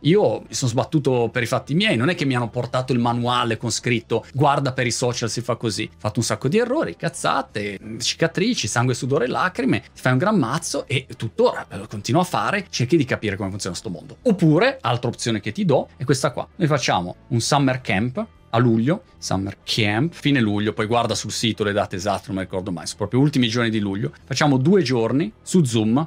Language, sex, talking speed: Italian, male, 225 wpm